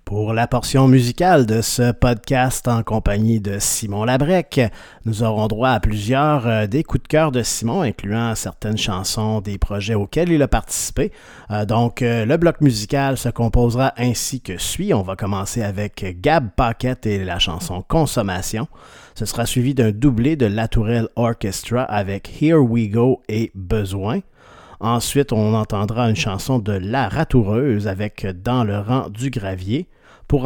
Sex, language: male, French